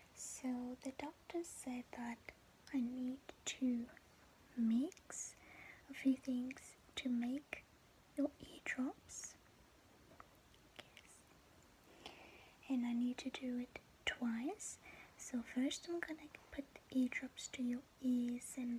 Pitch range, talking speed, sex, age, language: 245-280 Hz, 110 wpm, female, 20-39, English